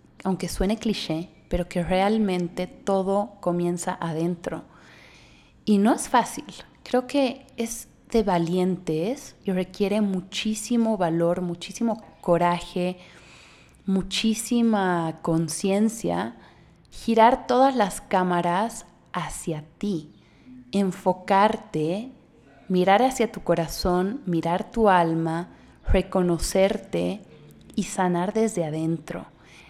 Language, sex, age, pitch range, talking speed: Spanish, female, 30-49, 175-220 Hz, 90 wpm